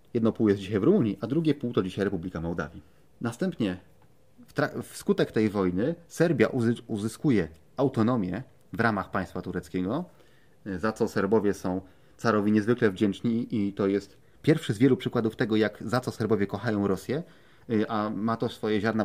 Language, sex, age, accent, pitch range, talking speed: Polish, male, 30-49, native, 100-125 Hz, 165 wpm